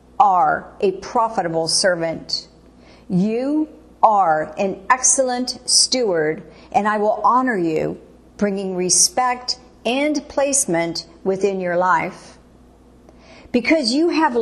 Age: 50-69